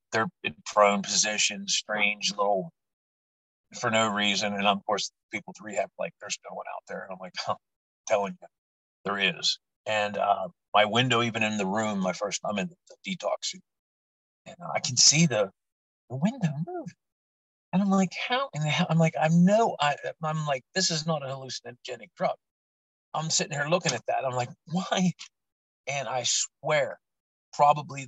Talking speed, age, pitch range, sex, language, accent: 175 wpm, 40-59, 105-155 Hz, male, English, American